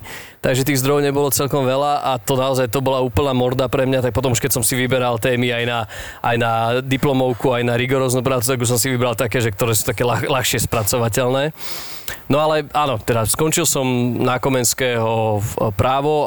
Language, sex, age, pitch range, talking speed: Slovak, male, 20-39, 120-140 Hz, 195 wpm